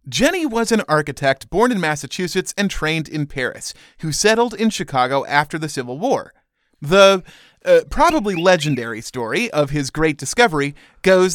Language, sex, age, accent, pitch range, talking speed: English, male, 30-49, American, 145-215 Hz, 155 wpm